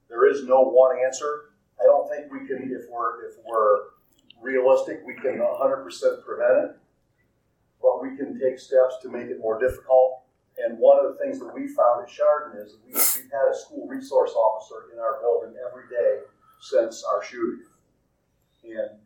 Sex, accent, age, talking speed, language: male, American, 50-69, 185 wpm, English